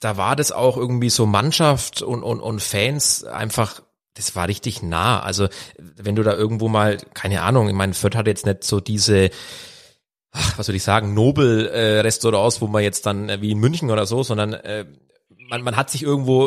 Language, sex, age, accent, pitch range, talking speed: German, male, 30-49, German, 110-135 Hz, 200 wpm